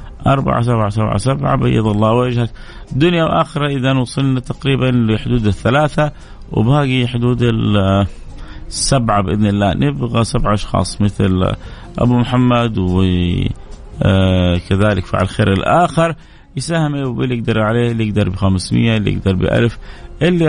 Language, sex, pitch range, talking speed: Arabic, male, 100-130 Hz, 125 wpm